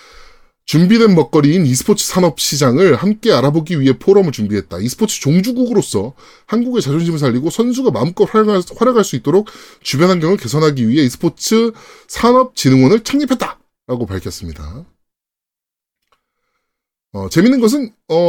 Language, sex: Korean, male